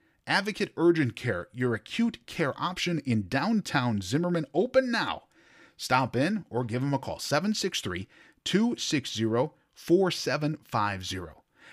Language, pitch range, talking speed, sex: English, 105-140 Hz, 115 wpm, male